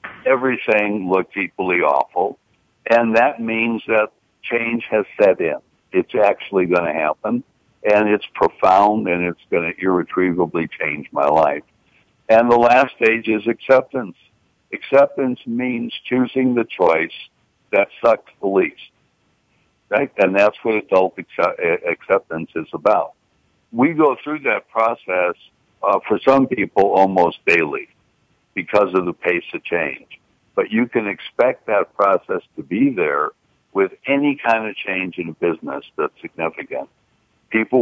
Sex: male